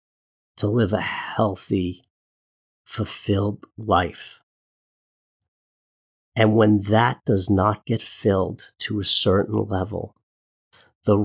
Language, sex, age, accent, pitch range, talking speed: English, male, 40-59, American, 95-115 Hz, 95 wpm